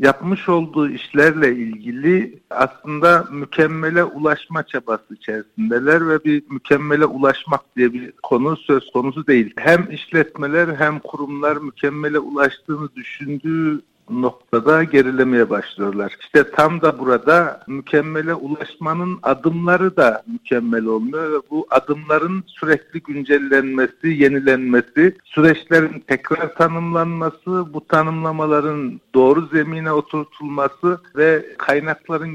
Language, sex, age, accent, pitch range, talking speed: Turkish, male, 60-79, native, 140-165 Hz, 100 wpm